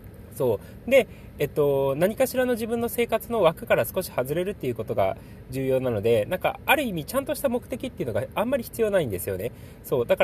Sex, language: male, Japanese